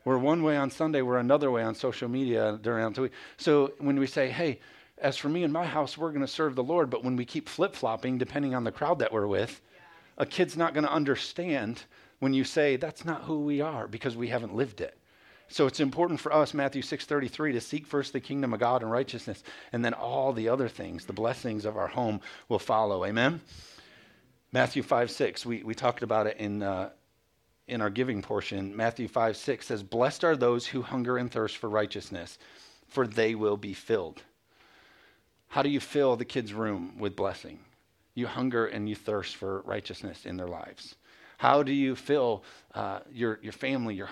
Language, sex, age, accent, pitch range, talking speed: English, male, 50-69, American, 115-145 Hz, 205 wpm